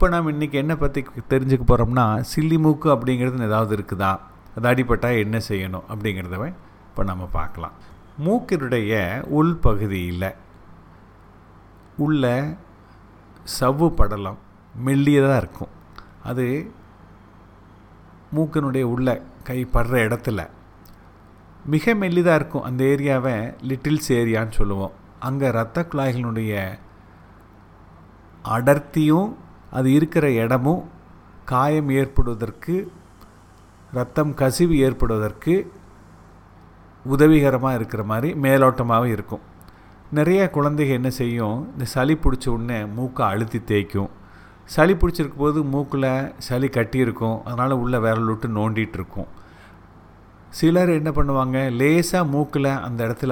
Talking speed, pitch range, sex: 95 wpm, 100-135 Hz, male